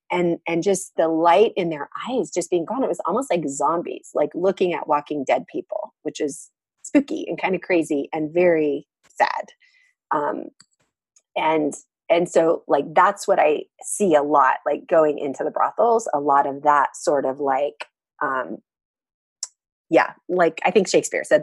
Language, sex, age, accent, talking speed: English, female, 30-49, American, 175 wpm